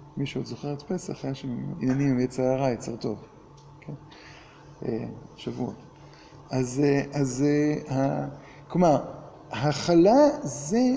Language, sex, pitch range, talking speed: Hebrew, male, 145-190 Hz, 100 wpm